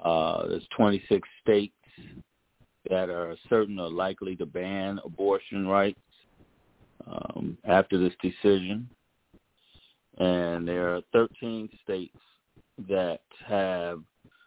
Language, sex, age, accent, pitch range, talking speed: English, male, 40-59, American, 85-100 Hz, 100 wpm